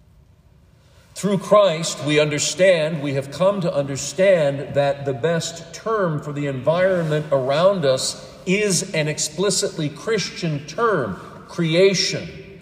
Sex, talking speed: male, 115 wpm